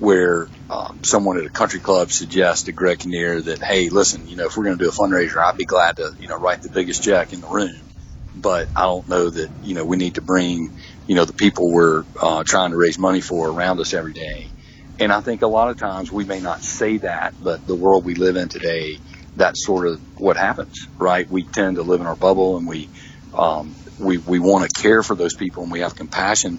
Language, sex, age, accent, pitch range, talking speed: English, male, 40-59, American, 80-95 Hz, 245 wpm